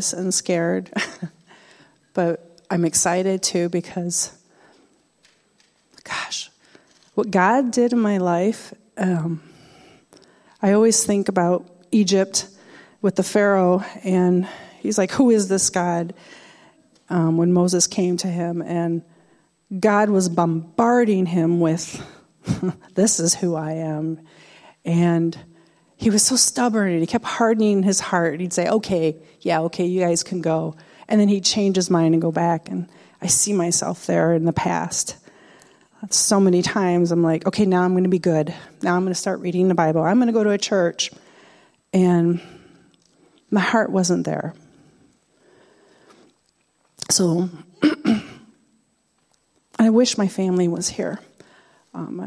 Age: 40-59